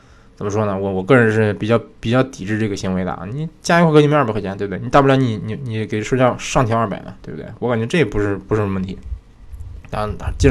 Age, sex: 20-39, male